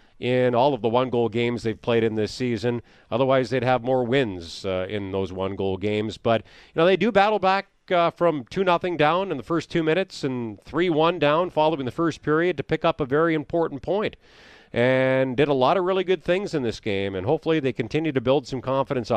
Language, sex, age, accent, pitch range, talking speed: English, male, 40-59, American, 115-150 Hz, 220 wpm